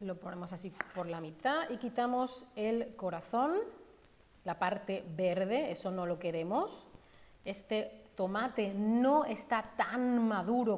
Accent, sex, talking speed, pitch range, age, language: Spanish, female, 130 wpm, 185-255 Hz, 30-49, Spanish